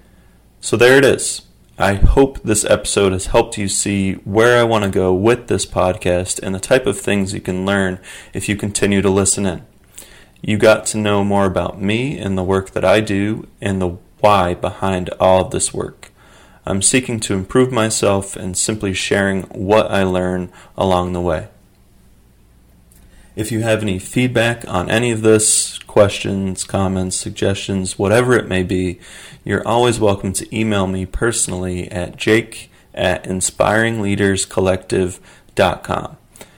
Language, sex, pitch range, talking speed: English, male, 95-110 Hz, 160 wpm